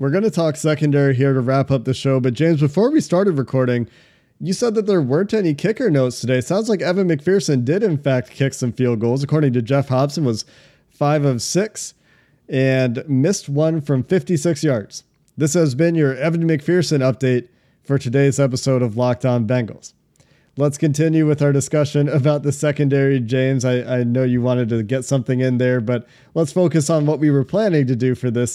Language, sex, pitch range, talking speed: English, male, 130-155 Hz, 205 wpm